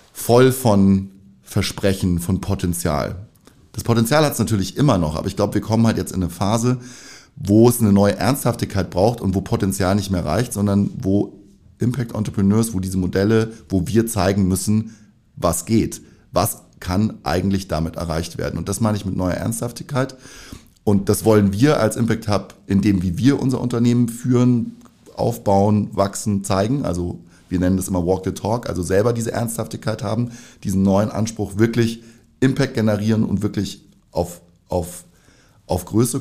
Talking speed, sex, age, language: 170 wpm, male, 30-49, German